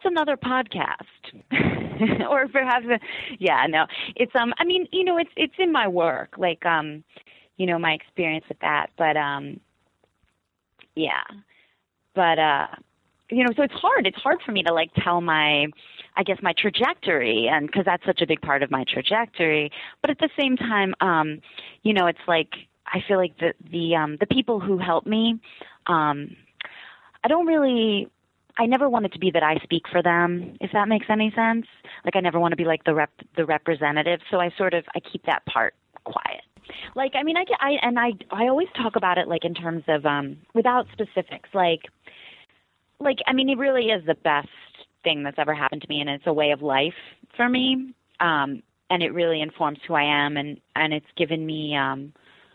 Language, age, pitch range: English, 30-49, 155-235 Hz